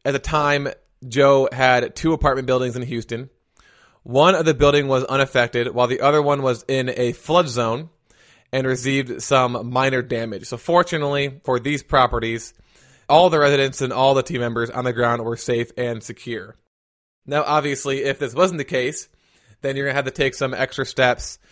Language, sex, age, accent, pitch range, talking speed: English, male, 20-39, American, 120-140 Hz, 185 wpm